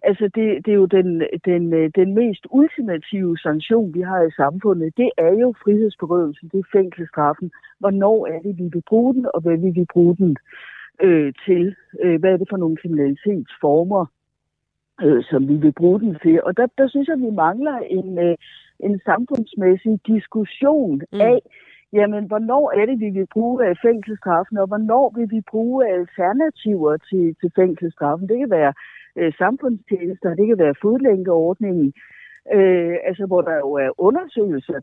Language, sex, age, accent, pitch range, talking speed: Danish, female, 60-79, native, 165-220 Hz, 155 wpm